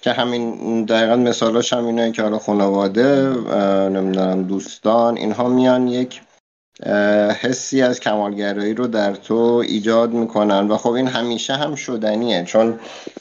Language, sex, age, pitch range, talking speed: Persian, male, 50-69, 95-115 Hz, 125 wpm